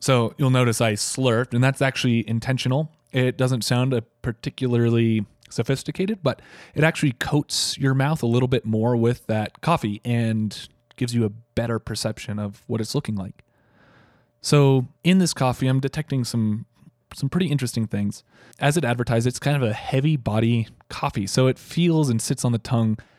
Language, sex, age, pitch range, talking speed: English, male, 20-39, 115-140 Hz, 175 wpm